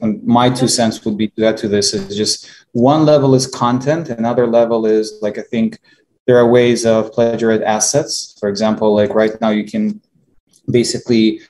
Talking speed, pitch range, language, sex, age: 190 wpm, 105-125 Hz, English, male, 20-39